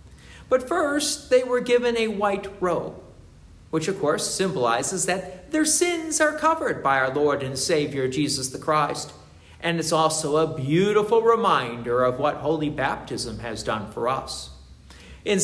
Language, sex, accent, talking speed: English, male, American, 155 wpm